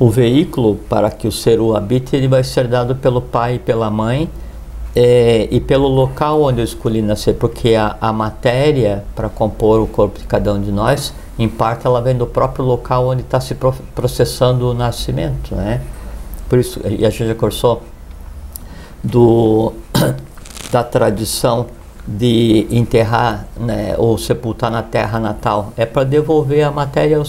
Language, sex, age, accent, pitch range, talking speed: Portuguese, male, 60-79, Brazilian, 105-135 Hz, 165 wpm